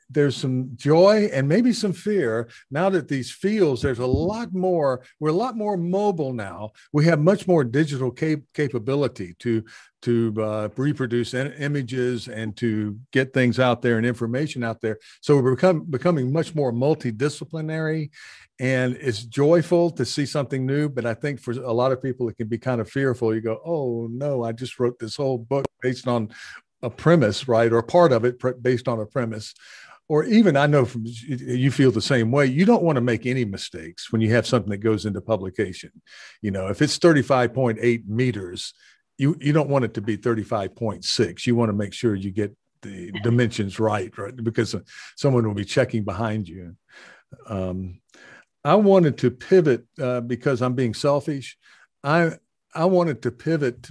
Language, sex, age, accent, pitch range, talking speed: English, male, 50-69, American, 115-145 Hz, 180 wpm